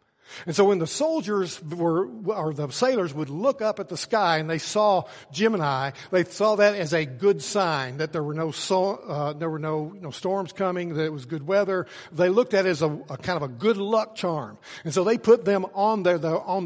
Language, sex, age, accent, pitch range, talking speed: English, male, 60-79, American, 140-185 Hz, 230 wpm